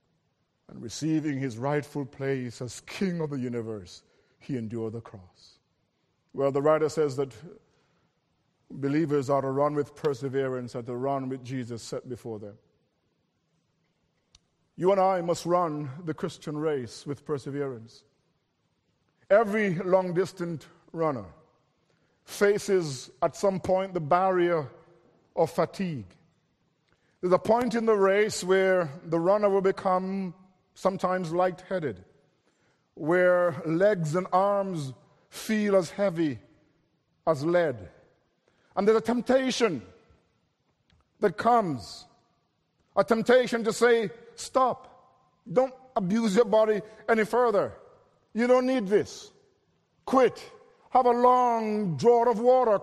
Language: English